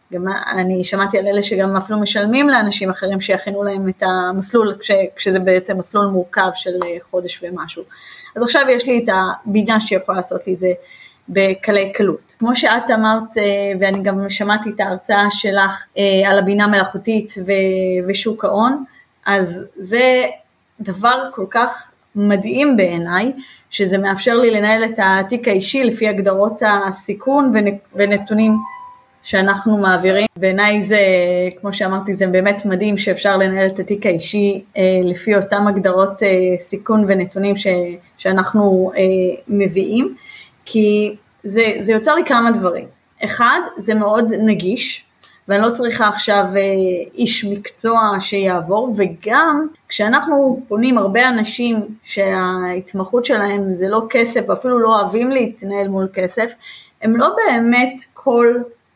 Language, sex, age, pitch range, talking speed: Hebrew, female, 20-39, 190-225 Hz, 130 wpm